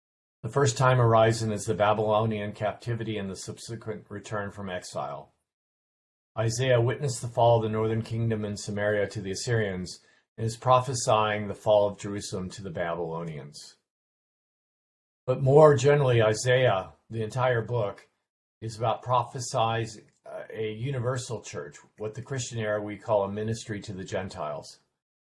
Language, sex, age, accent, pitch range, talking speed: English, male, 50-69, American, 100-120 Hz, 145 wpm